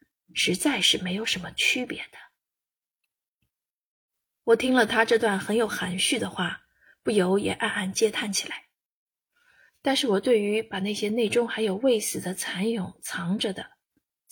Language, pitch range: Chinese, 205-265 Hz